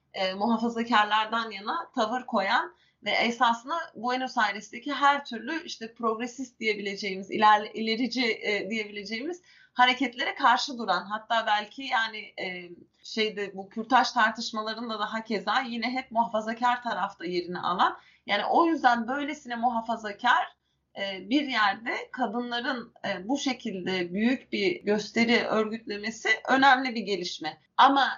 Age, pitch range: 30-49, 215-270 Hz